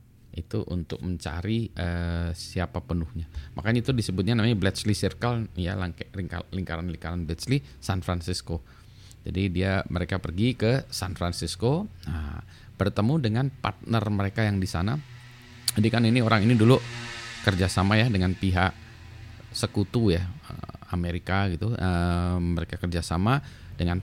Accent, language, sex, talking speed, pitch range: native, Indonesian, male, 125 wpm, 90-115 Hz